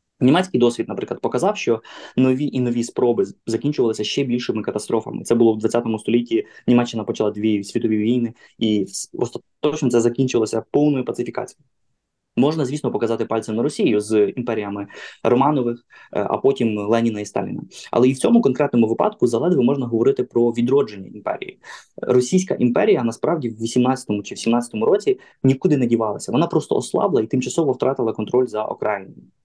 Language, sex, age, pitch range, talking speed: Ukrainian, male, 20-39, 115-135 Hz, 155 wpm